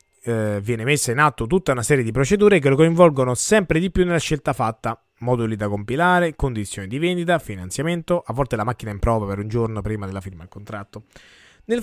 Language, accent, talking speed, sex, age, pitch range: Italian, native, 210 wpm, male, 20-39, 115-170 Hz